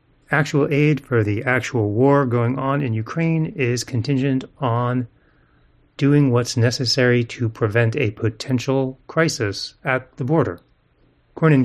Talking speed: 130 wpm